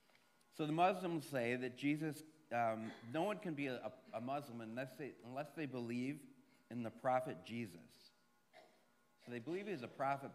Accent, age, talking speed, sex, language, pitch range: American, 50-69, 170 wpm, male, English, 105-135 Hz